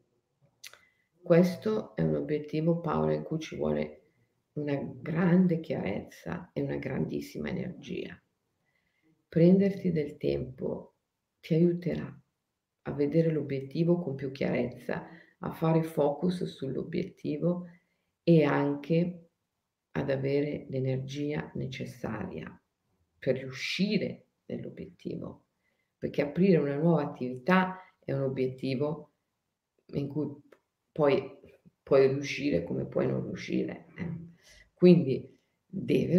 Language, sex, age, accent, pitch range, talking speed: Italian, female, 50-69, native, 135-185 Hz, 100 wpm